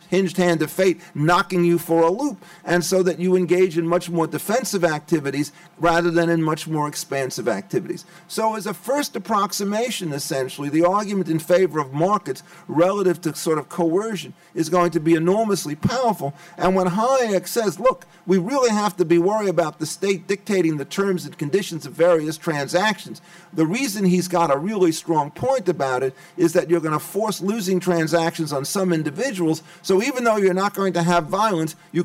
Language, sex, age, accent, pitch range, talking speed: English, male, 50-69, American, 165-190 Hz, 195 wpm